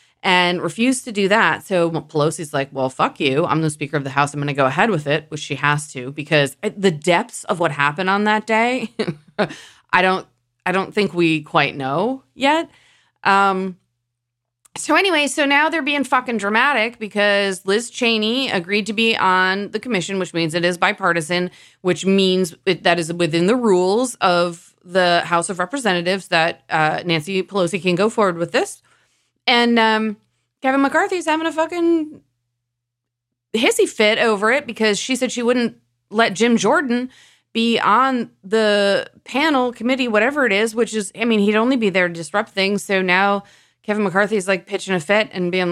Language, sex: English, female